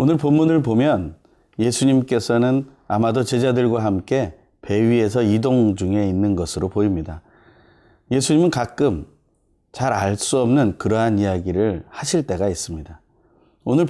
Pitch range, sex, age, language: 100-135 Hz, male, 30-49, Korean